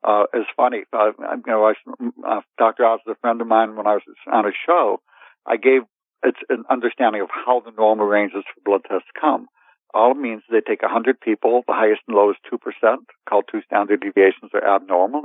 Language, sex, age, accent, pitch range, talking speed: English, male, 60-79, American, 105-130 Hz, 215 wpm